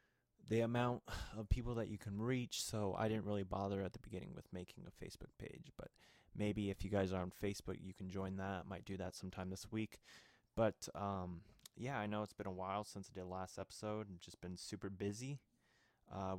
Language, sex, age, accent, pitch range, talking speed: English, male, 20-39, American, 95-105 Hz, 220 wpm